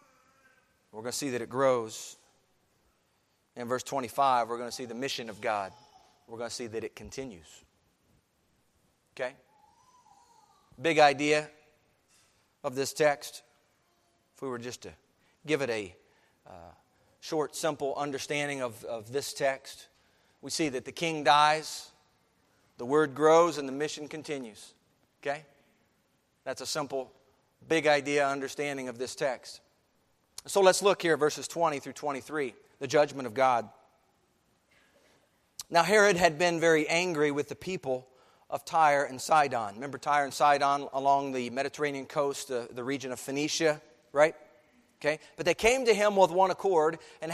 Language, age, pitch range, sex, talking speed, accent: English, 40-59, 135-175 Hz, male, 150 wpm, American